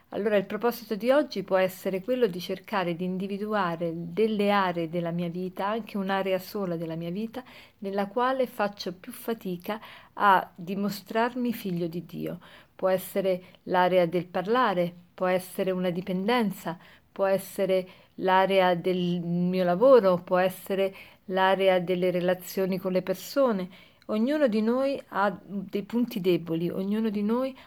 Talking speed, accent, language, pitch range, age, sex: 145 wpm, native, Italian, 185-220 Hz, 50-69, female